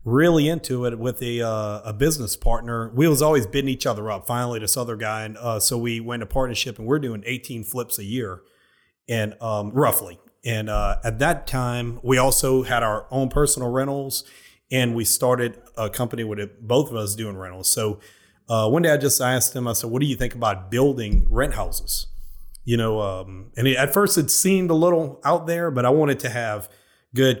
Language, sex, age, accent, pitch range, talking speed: English, male, 30-49, American, 110-135 Hz, 215 wpm